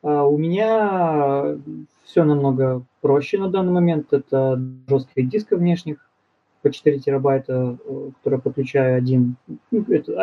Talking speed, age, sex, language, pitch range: 125 wpm, 20-39, male, Russian, 130-150 Hz